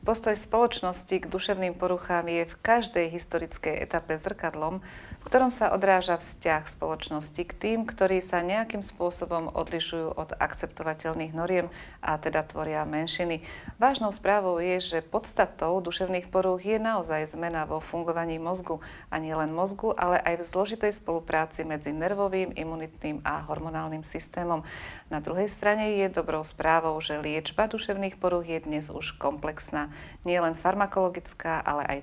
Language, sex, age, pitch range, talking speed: Slovak, female, 30-49, 155-185 Hz, 145 wpm